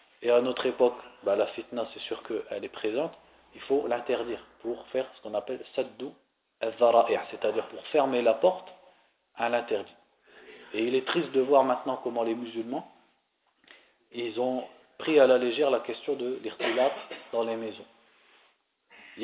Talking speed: 170 wpm